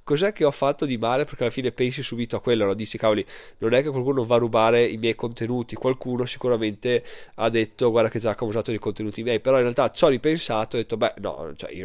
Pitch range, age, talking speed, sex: 120-175 Hz, 20-39, 260 wpm, male